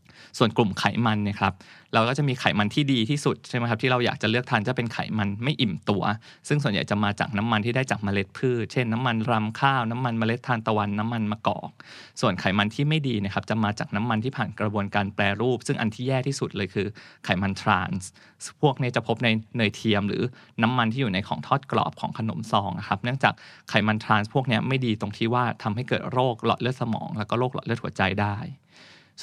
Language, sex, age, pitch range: Thai, male, 20-39, 105-125 Hz